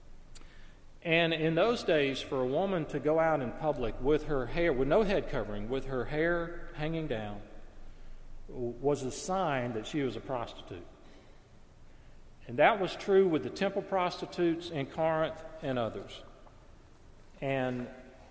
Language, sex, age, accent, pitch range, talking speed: English, male, 40-59, American, 125-170 Hz, 150 wpm